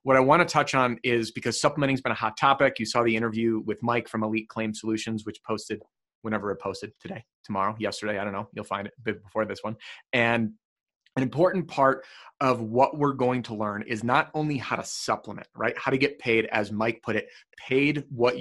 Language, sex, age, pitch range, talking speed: English, male, 30-49, 110-130 Hz, 220 wpm